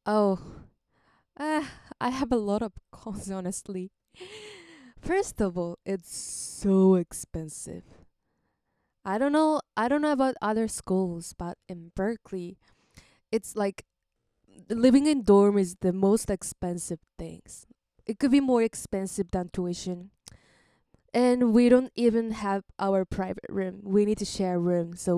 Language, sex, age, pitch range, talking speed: English, female, 10-29, 190-235 Hz, 140 wpm